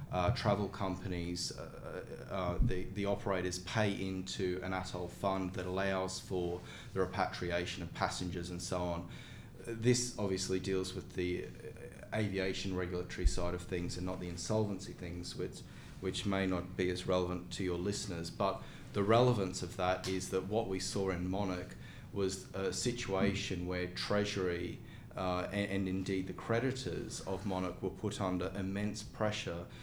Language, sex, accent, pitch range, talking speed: English, male, Australian, 90-100 Hz, 160 wpm